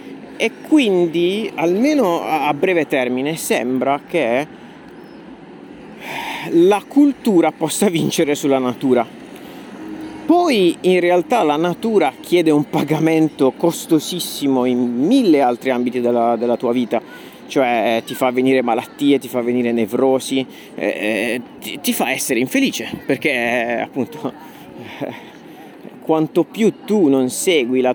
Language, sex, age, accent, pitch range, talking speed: Italian, male, 40-59, native, 130-190 Hz, 120 wpm